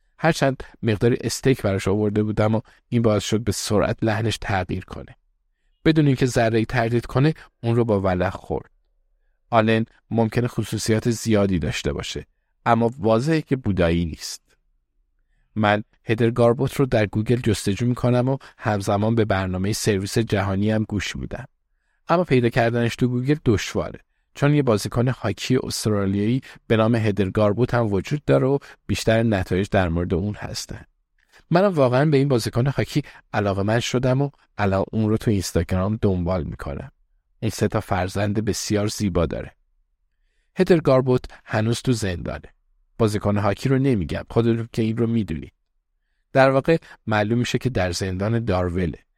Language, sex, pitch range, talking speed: Persian, male, 100-120 Hz, 150 wpm